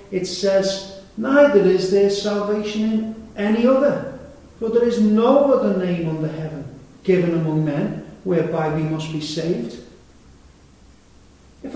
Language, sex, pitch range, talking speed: English, male, 155-205 Hz, 135 wpm